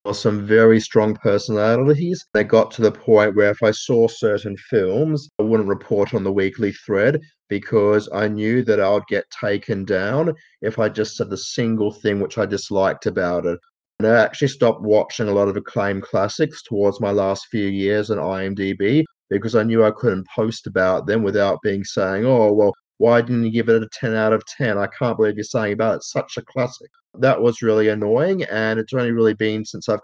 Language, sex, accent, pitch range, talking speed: English, male, Australian, 100-115 Hz, 210 wpm